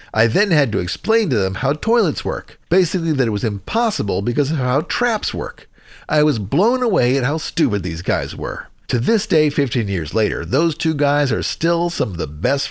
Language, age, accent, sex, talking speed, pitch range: English, 50-69, American, male, 210 wpm, 110-175 Hz